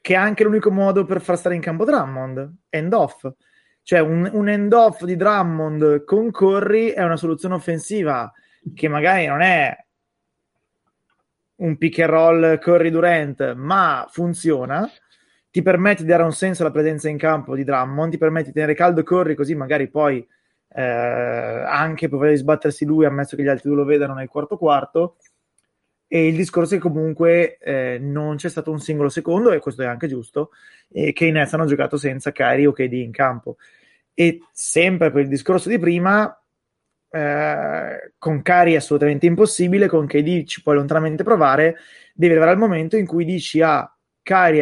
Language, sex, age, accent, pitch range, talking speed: Italian, male, 20-39, native, 145-185 Hz, 175 wpm